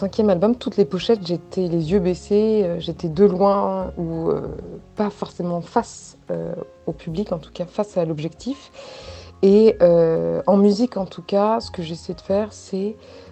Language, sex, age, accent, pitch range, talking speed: French, female, 20-39, French, 175-225 Hz, 160 wpm